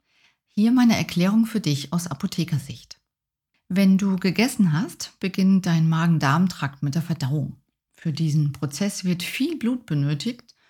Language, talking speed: German, 135 wpm